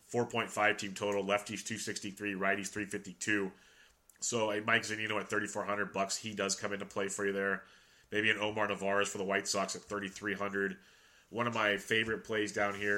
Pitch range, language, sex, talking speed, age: 100-105 Hz, English, male, 180 wpm, 30-49